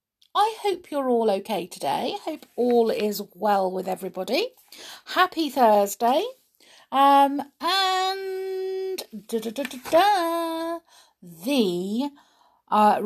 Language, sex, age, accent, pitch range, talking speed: English, female, 50-69, British, 205-300 Hz, 85 wpm